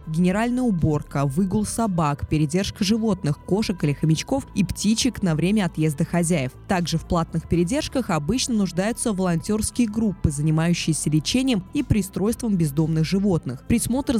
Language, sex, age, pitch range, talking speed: Russian, female, 20-39, 165-225 Hz, 125 wpm